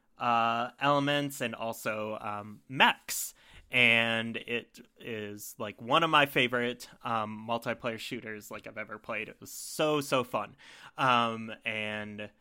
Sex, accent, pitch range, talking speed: male, American, 115-135 Hz, 135 wpm